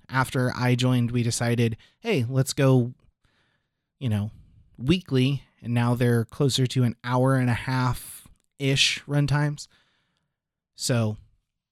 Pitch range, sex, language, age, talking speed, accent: 115-140 Hz, male, English, 30-49, 120 wpm, American